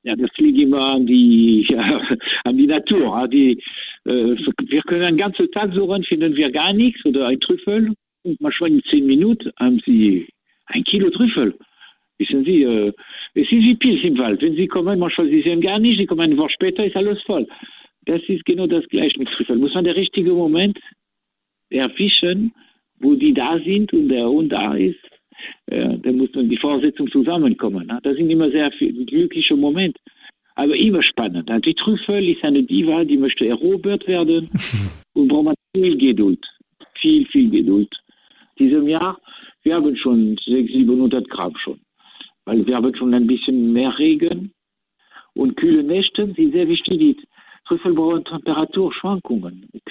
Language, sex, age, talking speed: German, male, 60-79, 170 wpm